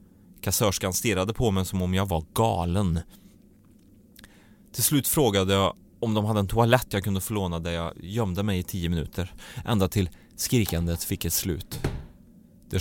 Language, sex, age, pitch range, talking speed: English, male, 30-49, 90-125 Hz, 165 wpm